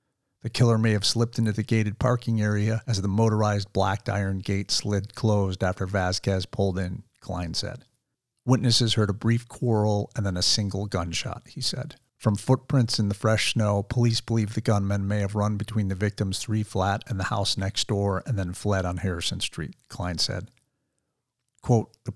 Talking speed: 185 wpm